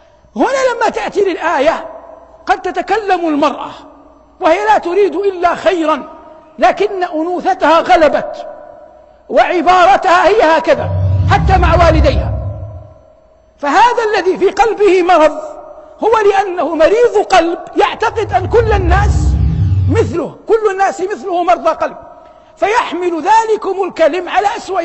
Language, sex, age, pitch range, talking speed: Arabic, male, 50-69, 290-370 Hz, 110 wpm